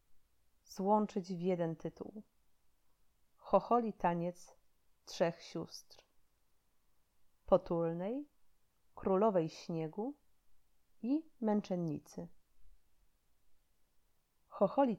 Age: 30-49